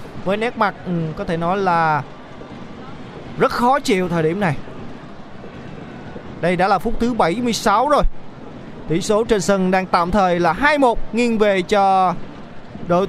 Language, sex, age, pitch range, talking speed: Vietnamese, male, 20-39, 165-210 Hz, 150 wpm